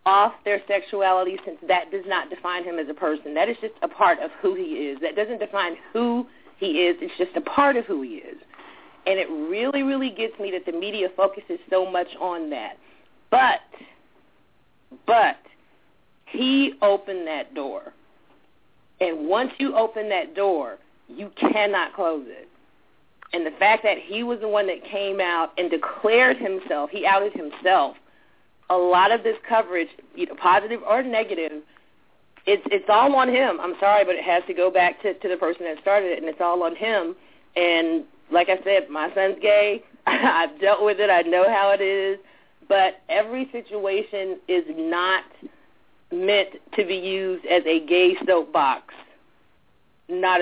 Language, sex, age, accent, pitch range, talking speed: English, female, 40-59, American, 180-240 Hz, 175 wpm